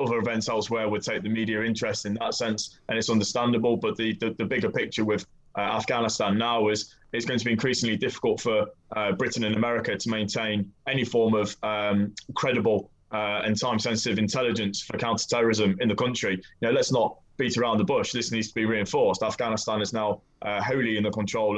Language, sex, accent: English, male, British